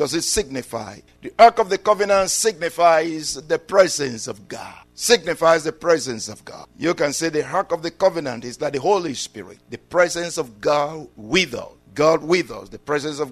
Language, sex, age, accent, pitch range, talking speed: English, male, 50-69, Nigerian, 155-235 Hz, 195 wpm